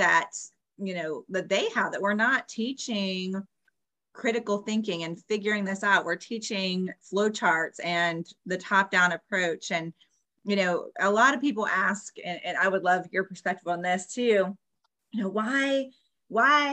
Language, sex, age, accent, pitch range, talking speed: English, female, 30-49, American, 175-205 Hz, 165 wpm